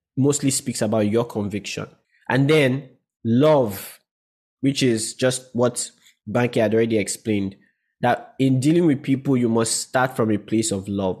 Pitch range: 110-135 Hz